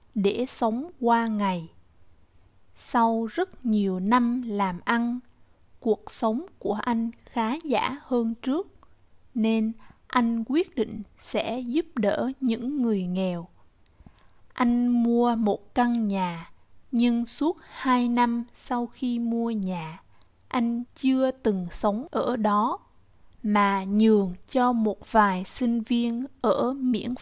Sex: female